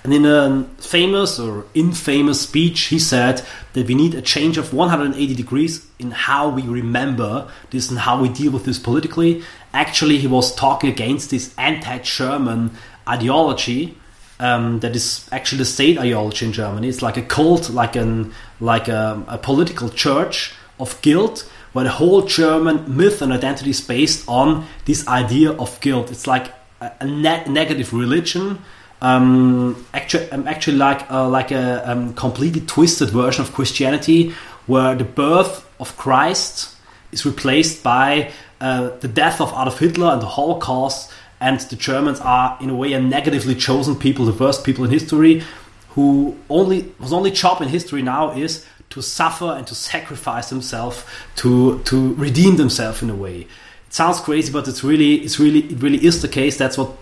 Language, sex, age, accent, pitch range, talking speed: English, male, 30-49, German, 125-150 Hz, 175 wpm